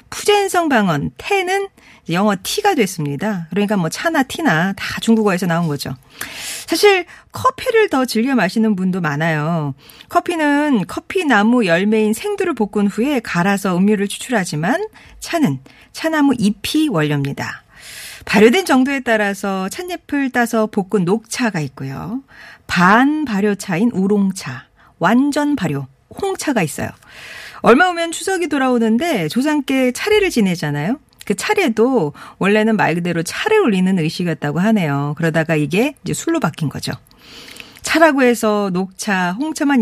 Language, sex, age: Korean, female, 40-59